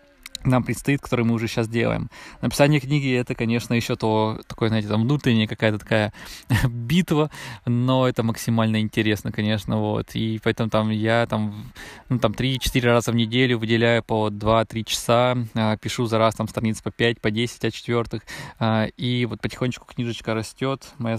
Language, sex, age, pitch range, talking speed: Russian, male, 20-39, 110-130 Hz, 170 wpm